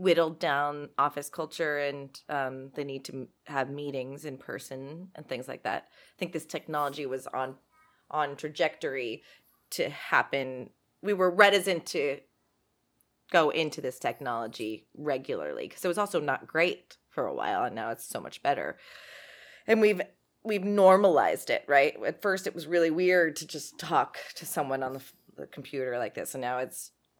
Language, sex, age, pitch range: English, female, 20-39, 140-185 Hz